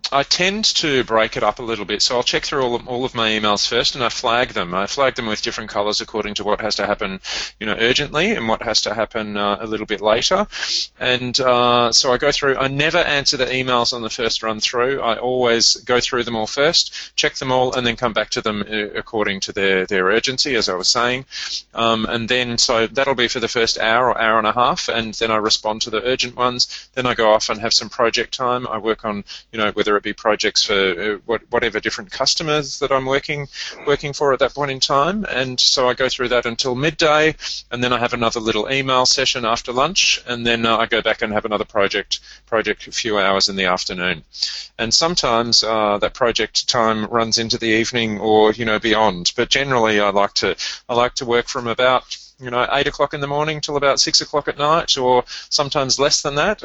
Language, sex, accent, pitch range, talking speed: English, male, Australian, 110-135 Hz, 235 wpm